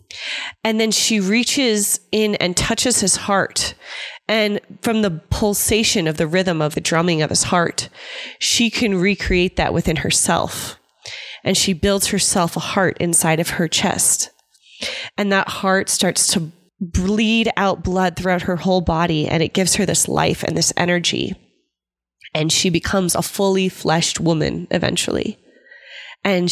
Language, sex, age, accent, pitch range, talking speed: English, female, 20-39, American, 170-200 Hz, 155 wpm